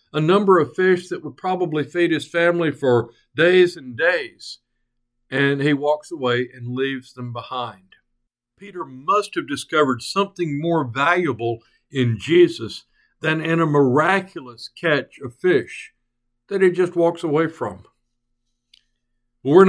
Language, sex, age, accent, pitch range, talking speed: English, male, 60-79, American, 120-165 Hz, 135 wpm